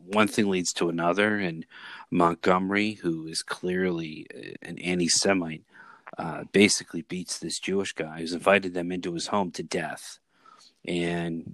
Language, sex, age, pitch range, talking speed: English, male, 30-49, 85-100 Hz, 135 wpm